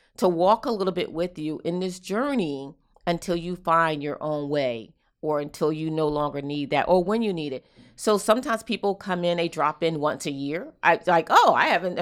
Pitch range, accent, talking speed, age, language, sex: 155-190 Hz, American, 220 wpm, 40-59, English, female